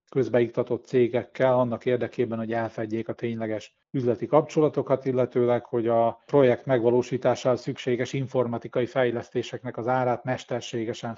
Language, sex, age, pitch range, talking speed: Hungarian, male, 40-59, 115-130 Hz, 115 wpm